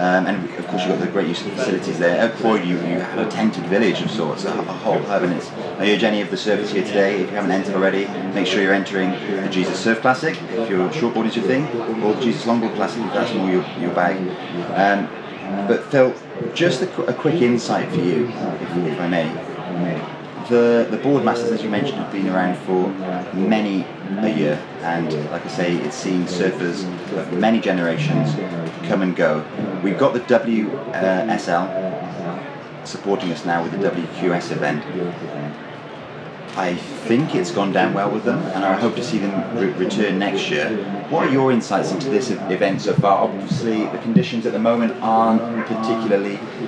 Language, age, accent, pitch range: English, 30-49, British, 95-115 Hz